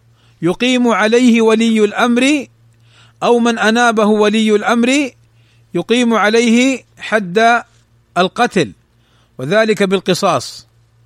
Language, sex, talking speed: Arabic, male, 80 wpm